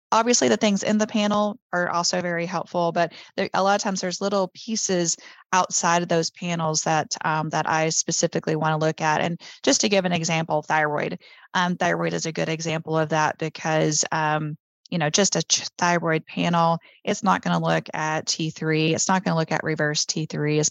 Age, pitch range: 30-49, 155-180 Hz